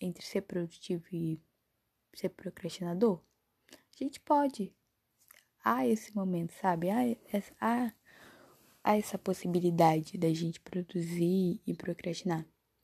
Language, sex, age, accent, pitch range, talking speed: Portuguese, female, 10-29, Brazilian, 185-230 Hz, 110 wpm